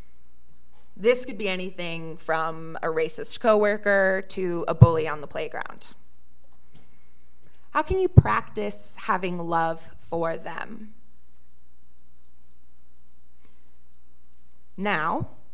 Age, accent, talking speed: 30-49, American, 90 wpm